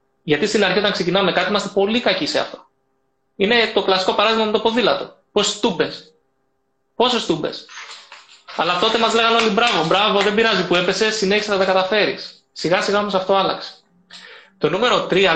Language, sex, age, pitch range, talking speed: Greek, male, 20-39, 160-205 Hz, 175 wpm